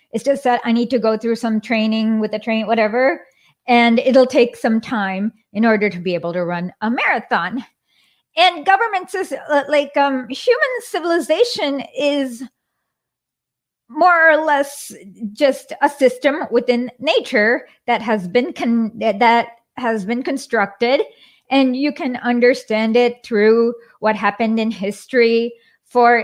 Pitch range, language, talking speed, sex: 220-270 Hz, English, 140 wpm, female